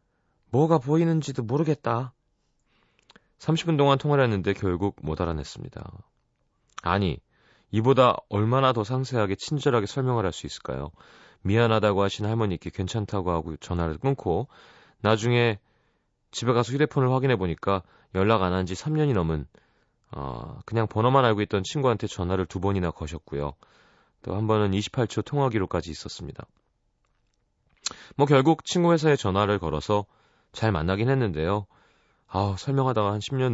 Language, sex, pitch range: Korean, male, 90-130 Hz